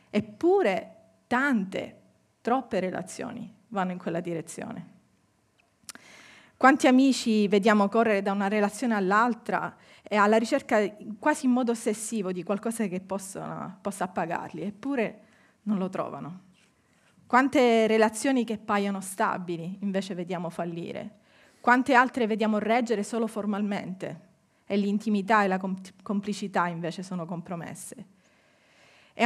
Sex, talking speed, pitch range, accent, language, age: female, 115 wpm, 190-230 Hz, native, Italian, 30-49